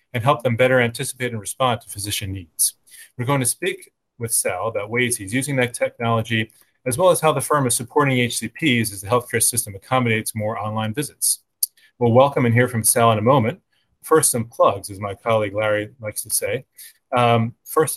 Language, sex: English, male